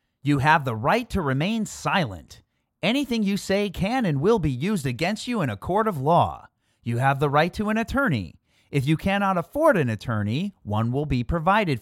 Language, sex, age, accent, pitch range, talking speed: English, male, 30-49, American, 115-195 Hz, 200 wpm